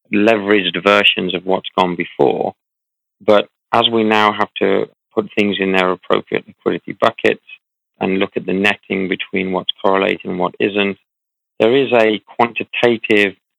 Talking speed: 150 wpm